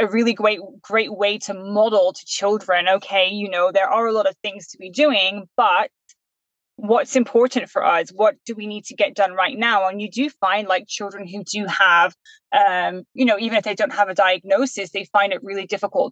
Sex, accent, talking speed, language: female, British, 220 wpm, English